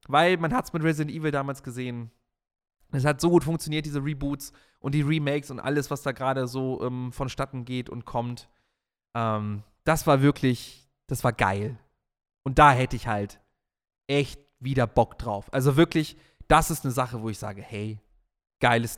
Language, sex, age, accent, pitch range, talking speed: German, male, 30-49, German, 125-175 Hz, 180 wpm